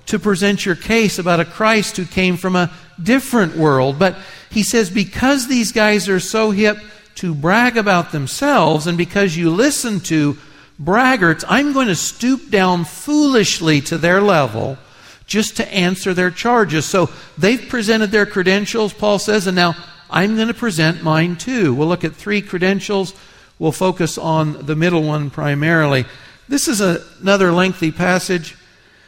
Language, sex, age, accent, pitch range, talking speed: English, male, 60-79, American, 155-205 Hz, 160 wpm